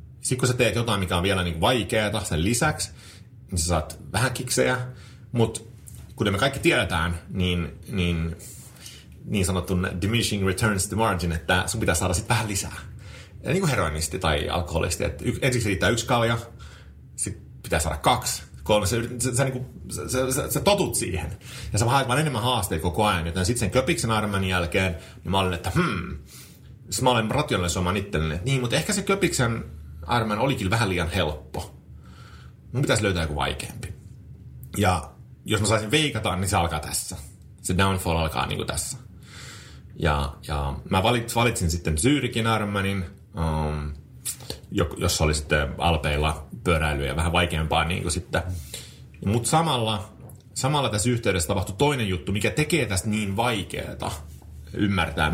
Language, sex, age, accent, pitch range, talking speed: Finnish, male, 30-49, native, 85-120 Hz, 155 wpm